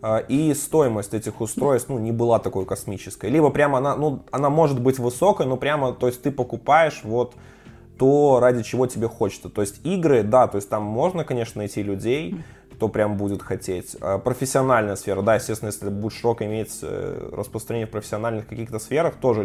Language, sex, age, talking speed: Russian, male, 20-39, 175 wpm